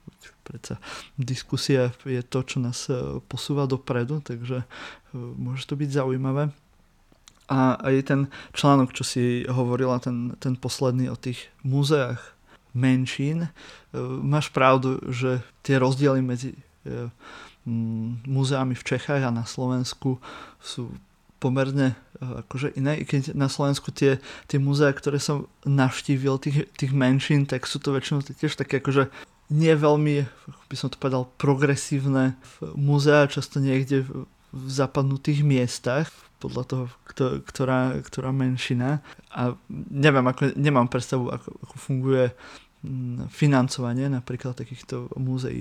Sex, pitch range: male, 125-140 Hz